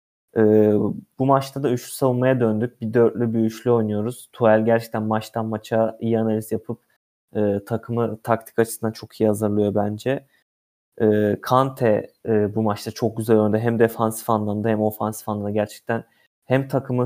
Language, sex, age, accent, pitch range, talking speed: Turkish, male, 30-49, native, 110-120 Hz, 155 wpm